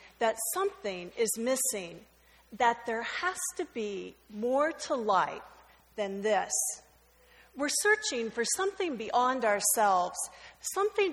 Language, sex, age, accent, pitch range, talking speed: English, female, 50-69, American, 205-290 Hz, 115 wpm